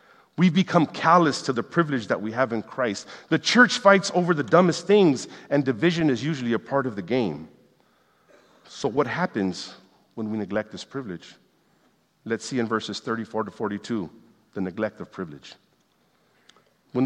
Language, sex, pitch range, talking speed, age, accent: English, male, 115-170 Hz, 165 wpm, 50-69, American